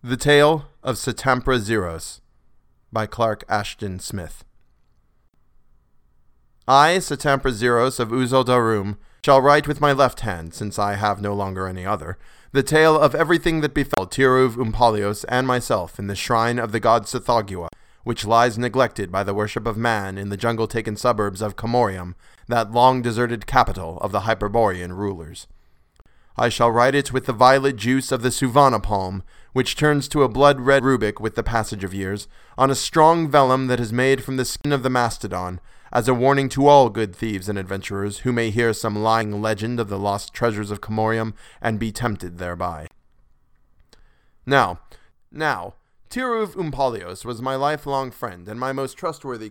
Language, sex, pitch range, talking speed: English, male, 105-130 Hz, 170 wpm